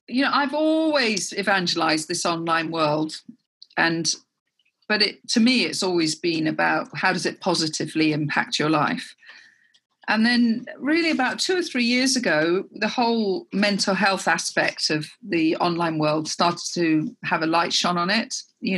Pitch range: 165-220 Hz